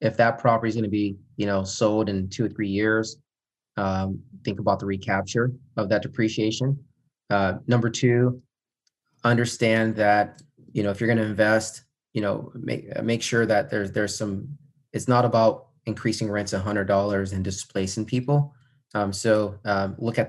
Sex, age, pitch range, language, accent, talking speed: male, 30-49, 100-120 Hz, English, American, 175 wpm